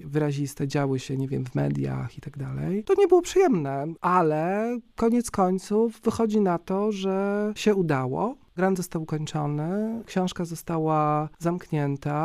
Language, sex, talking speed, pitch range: Polish, male, 140 wpm, 150-190 Hz